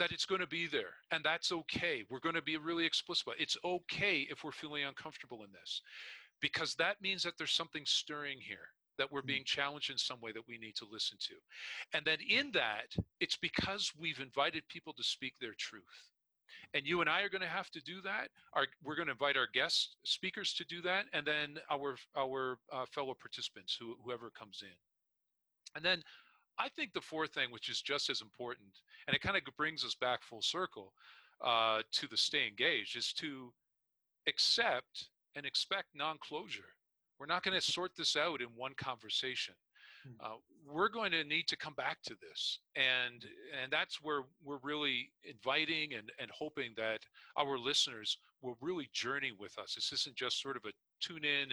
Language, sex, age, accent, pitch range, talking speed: English, male, 40-59, American, 125-170 Hz, 200 wpm